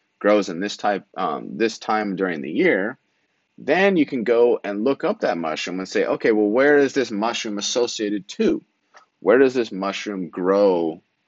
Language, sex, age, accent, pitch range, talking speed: English, male, 30-49, American, 95-120 Hz, 180 wpm